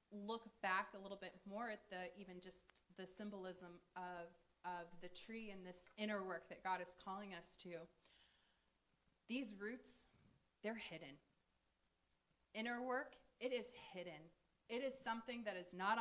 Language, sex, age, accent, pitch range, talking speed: English, female, 20-39, American, 180-220 Hz, 155 wpm